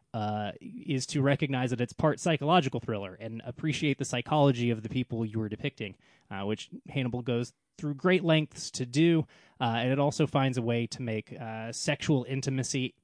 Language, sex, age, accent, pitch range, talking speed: English, male, 20-39, American, 115-150 Hz, 185 wpm